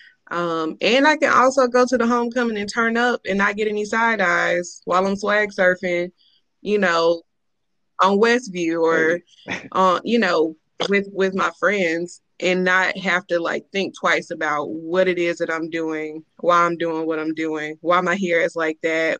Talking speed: 190 wpm